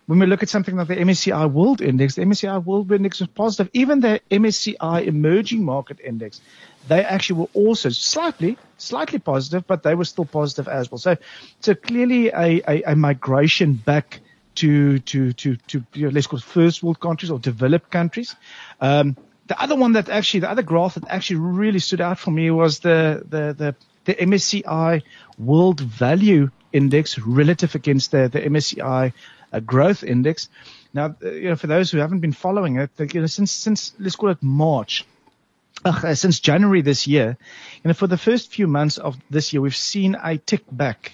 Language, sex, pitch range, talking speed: English, male, 140-185 Hz, 190 wpm